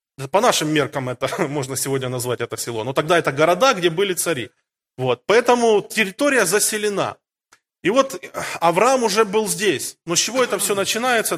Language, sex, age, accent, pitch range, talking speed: Russian, male, 20-39, native, 150-195 Hz, 165 wpm